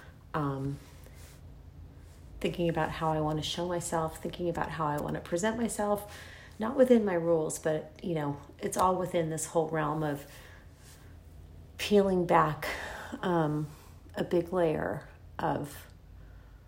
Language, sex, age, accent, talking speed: English, female, 30-49, American, 135 wpm